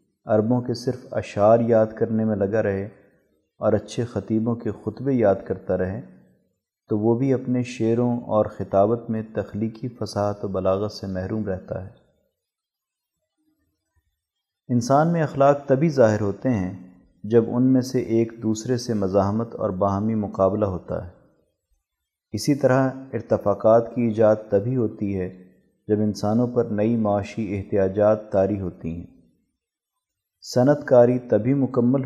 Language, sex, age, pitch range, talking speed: Urdu, male, 30-49, 100-125 Hz, 140 wpm